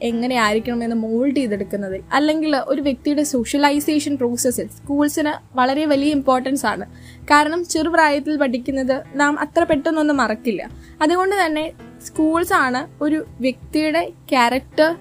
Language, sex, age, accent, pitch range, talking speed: Malayalam, female, 10-29, native, 250-315 Hz, 110 wpm